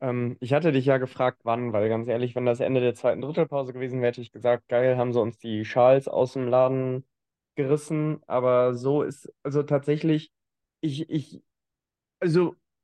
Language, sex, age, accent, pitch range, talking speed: German, male, 20-39, German, 120-140 Hz, 180 wpm